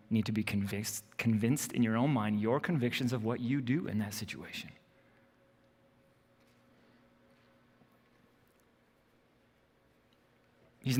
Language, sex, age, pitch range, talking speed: English, male, 30-49, 105-140 Hz, 105 wpm